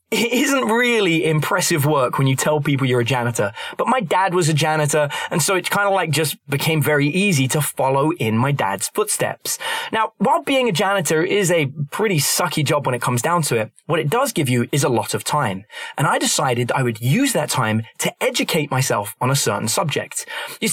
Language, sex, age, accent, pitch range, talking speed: English, male, 20-39, British, 130-190 Hz, 220 wpm